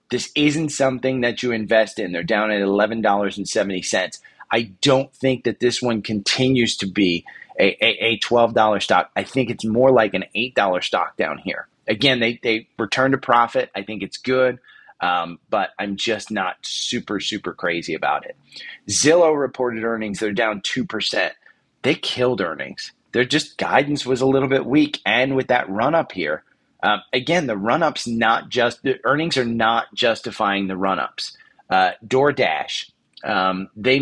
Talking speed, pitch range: 180 wpm, 110-130 Hz